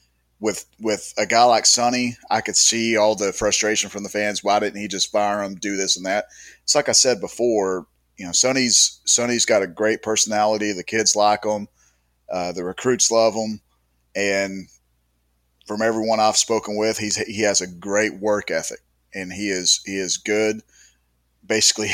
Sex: male